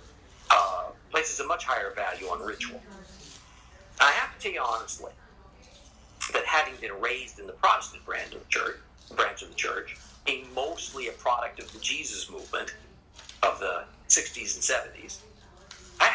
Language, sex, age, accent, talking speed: English, male, 50-69, American, 145 wpm